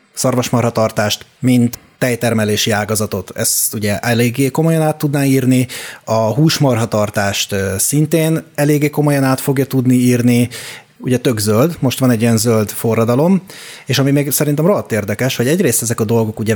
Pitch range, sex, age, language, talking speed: 110-135 Hz, male, 30-49, Hungarian, 150 wpm